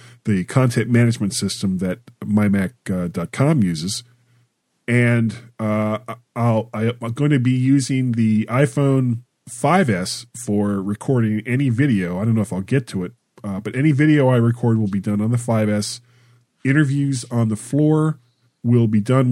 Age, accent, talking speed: 40-59, American, 155 wpm